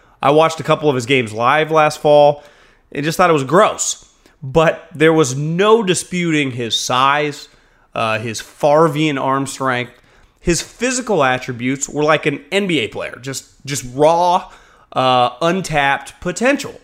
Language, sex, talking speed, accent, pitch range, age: English, male, 150 wpm, American, 125-165 Hz, 30-49